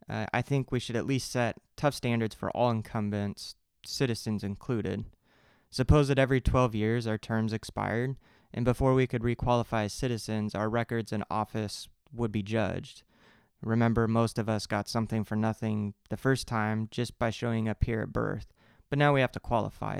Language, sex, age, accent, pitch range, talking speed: English, male, 20-39, American, 105-120 Hz, 185 wpm